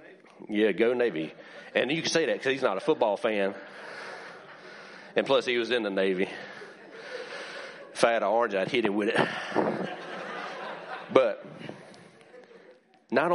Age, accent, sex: 40-59, American, male